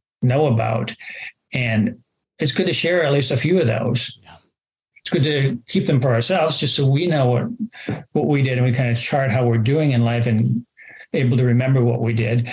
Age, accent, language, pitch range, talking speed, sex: 60-79, American, English, 120-145 Hz, 215 wpm, male